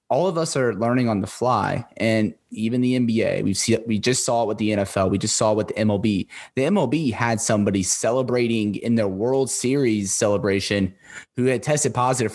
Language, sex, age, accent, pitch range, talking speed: English, male, 20-39, American, 100-115 Hz, 205 wpm